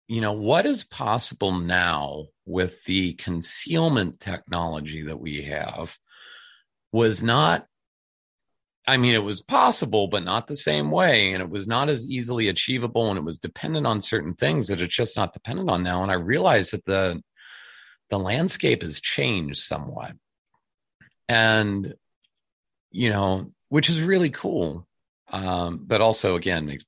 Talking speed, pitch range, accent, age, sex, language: 150 wpm, 90-120 Hz, American, 40-59, male, English